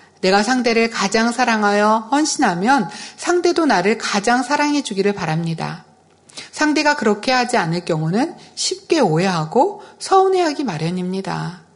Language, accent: Korean, native